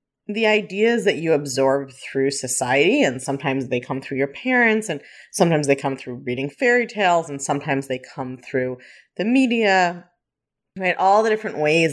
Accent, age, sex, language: American, 30-49, female, English